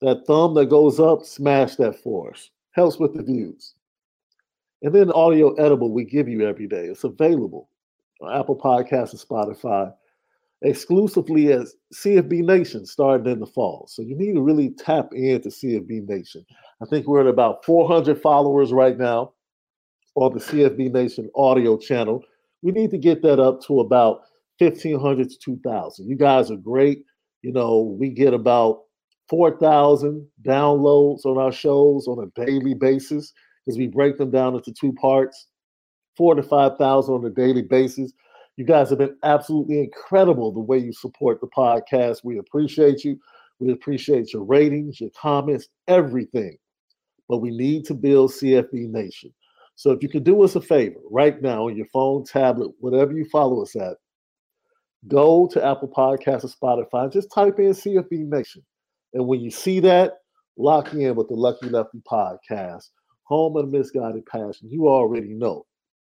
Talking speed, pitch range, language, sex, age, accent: 165 wpm, 125-155 Hz, English, male, 50-69, American